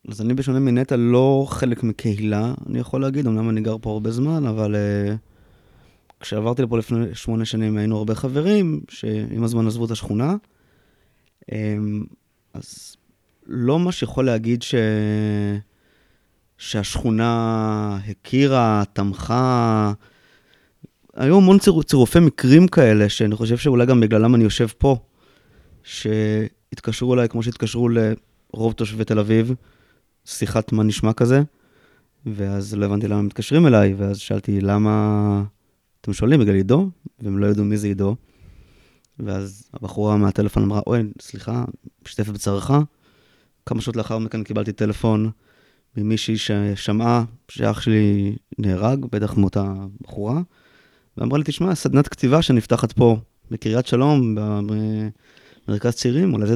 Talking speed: 125 wpm